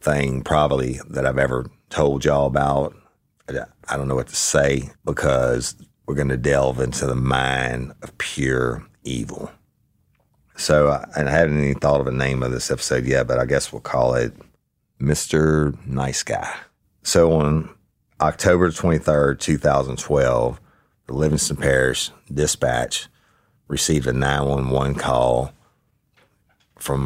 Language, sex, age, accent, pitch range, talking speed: English, male, 40-59, American, 65-75 Hz, 135 wpm